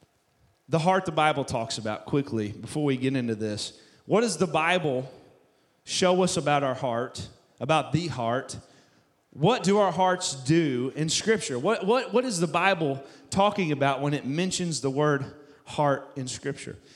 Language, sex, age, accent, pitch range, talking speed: English, male, 30-49, American, 135-175 Hz, 165 wpm